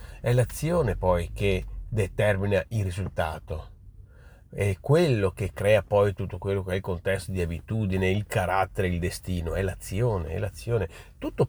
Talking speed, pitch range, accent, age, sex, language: 150 wpm, 90-130 Hz, native, 40-59, male, Italian